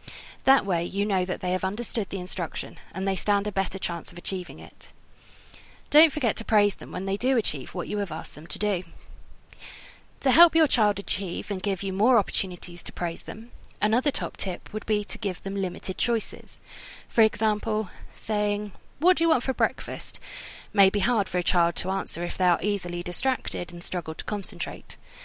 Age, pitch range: 20-39, 180-225 Hz